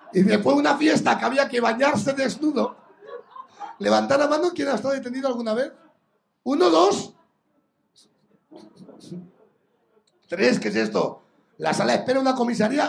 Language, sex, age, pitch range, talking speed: Spanish, male, 60-79, 165-275 Hz, 145 wpm